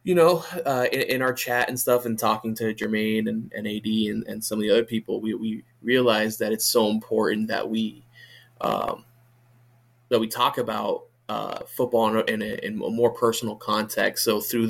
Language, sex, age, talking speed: English, male, 20-39, 195 wpm